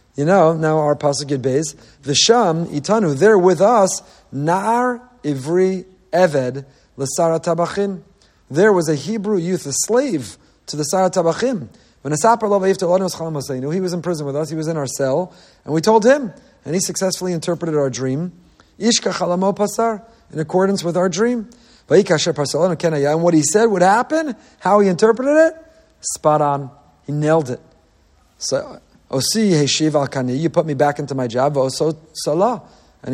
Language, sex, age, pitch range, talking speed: English, male, 40-59, 140-185 Hz, 140 wpm